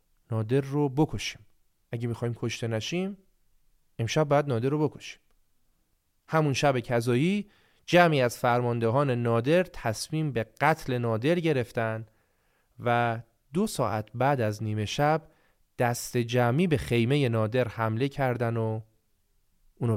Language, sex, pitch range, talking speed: Persian, male, 110-145 Hz, 120 wpm